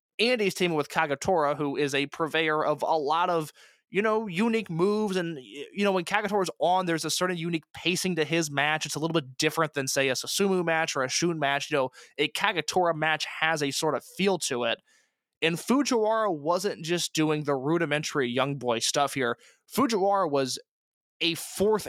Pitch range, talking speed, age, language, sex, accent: 145-190 Hz, 195 wpm, 20-39, English, male, American